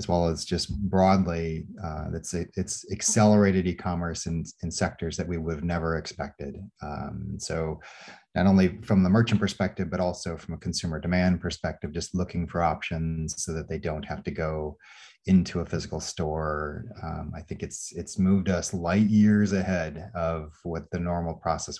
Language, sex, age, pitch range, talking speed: English, male, 30-49, 80-100 Hz, 180 wpm